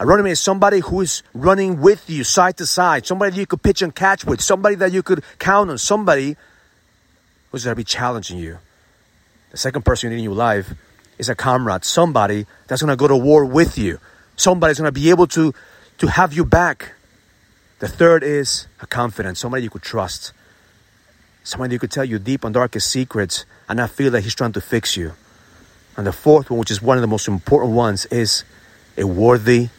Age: 40-59